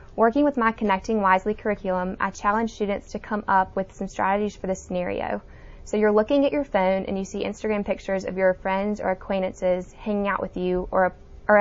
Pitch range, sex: 180-210 Hz, female